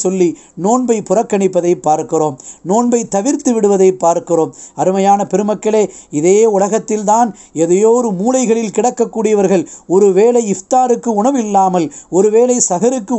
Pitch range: 180-230 Hz